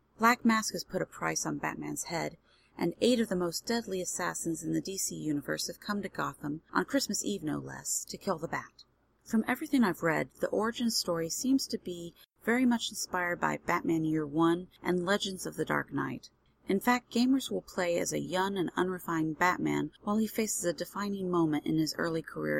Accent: American